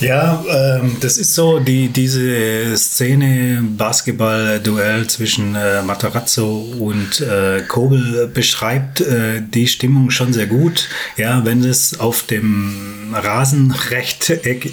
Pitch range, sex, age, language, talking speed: 115-135 Hz, male, 30-49, German, 115 wpm